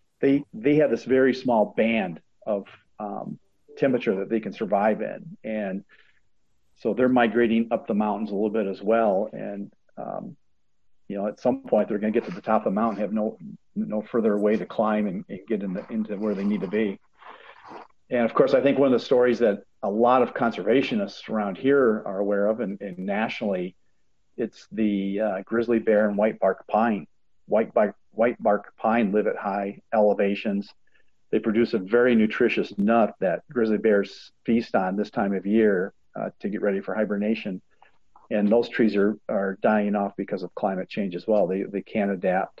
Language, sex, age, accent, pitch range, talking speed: English, male, 40-59, American, 105-115 Hz, 195 wpm